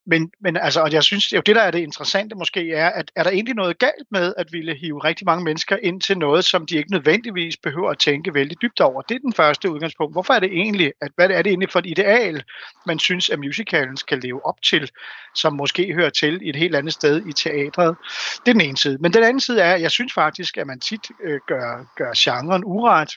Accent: native